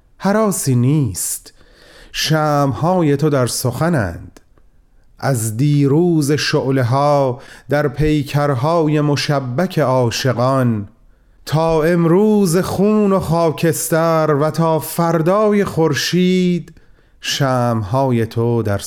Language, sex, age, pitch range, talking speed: Persian, male, 30-49, 110-170 Hz, 80 wpm